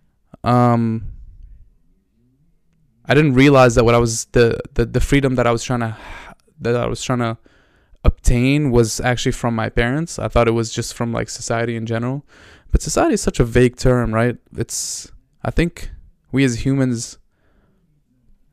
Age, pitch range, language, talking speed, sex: 20-39, 115-135 Hz, English, 170 wpm, male